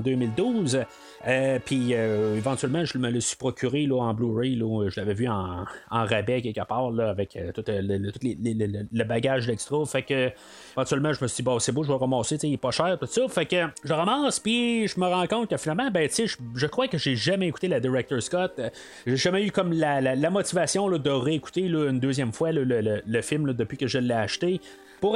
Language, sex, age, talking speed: French, male, 30-49, 250 wpm